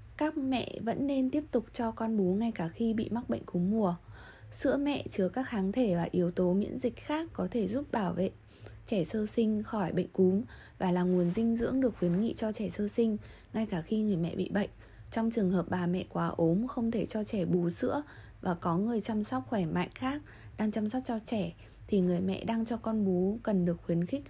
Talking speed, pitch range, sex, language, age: 235 wpm, 180-235 Hz, female, Vietnamese, 20-39